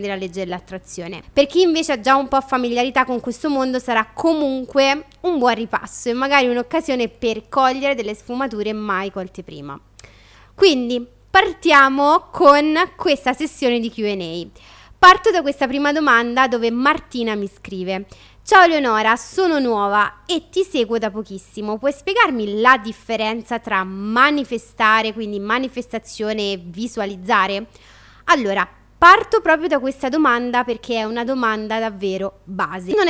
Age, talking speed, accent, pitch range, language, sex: 20-39, 140 wpm, native, 220-290 Hz, Italian, female